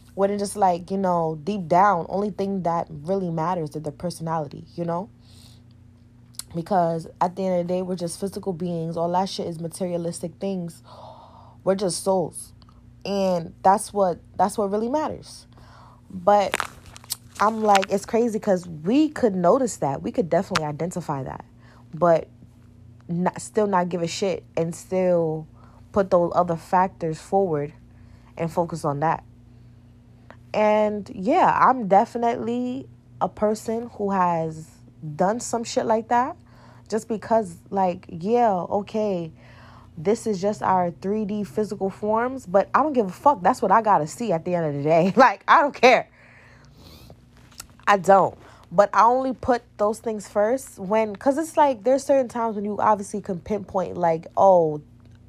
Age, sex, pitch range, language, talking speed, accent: 20-39, female, 155-210 Hz, English, 160 wpm, American